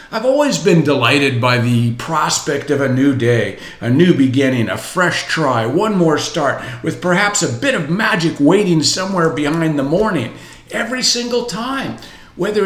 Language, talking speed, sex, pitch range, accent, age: English, 165 wpm, male, 135-200 Hz, American, 50-69